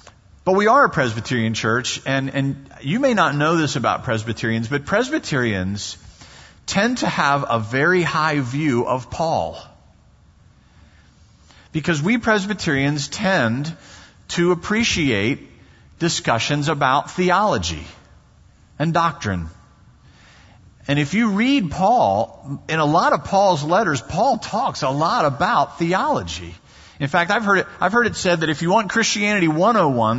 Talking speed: 135 wpm